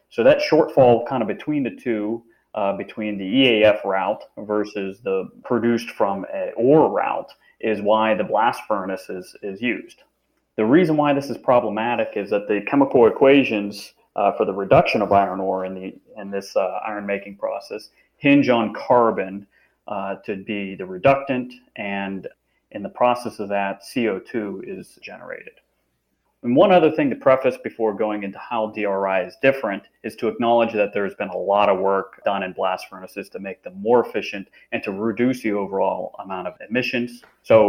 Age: 30-49